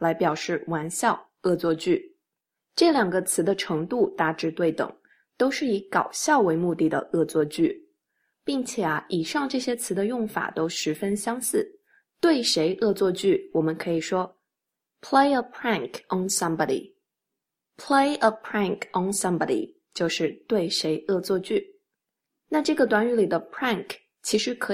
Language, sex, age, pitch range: Chinese, female, 20-39, 175-245 Hz